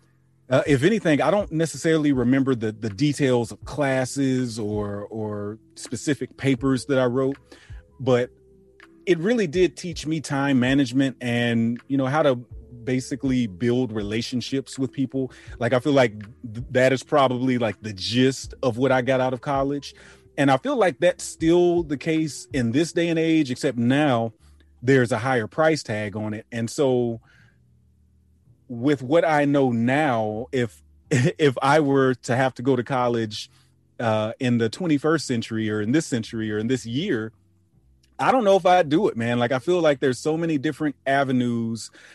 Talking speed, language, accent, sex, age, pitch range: 175 wpm, English, American, male, 30-49, 115-145 Hz